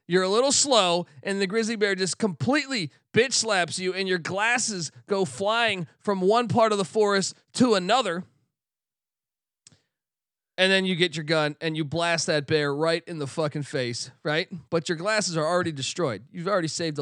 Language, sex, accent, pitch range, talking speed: English, male, American, 140-190 Hz, 185 wpm